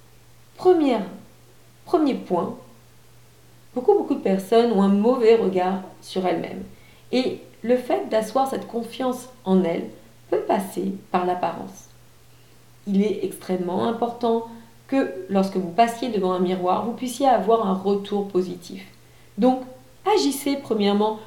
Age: 40-59